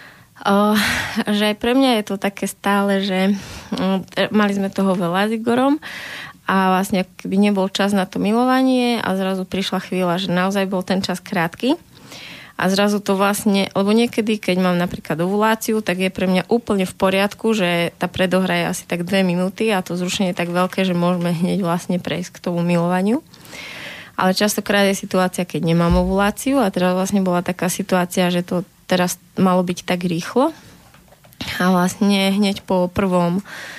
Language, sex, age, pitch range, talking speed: Slovak, female, 20-39, 180-200 Hz, 175 wpm